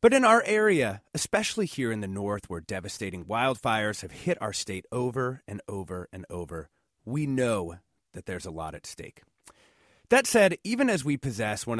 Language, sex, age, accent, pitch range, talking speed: English, male, 30-49, American, 100-165 Hz, 185 wpm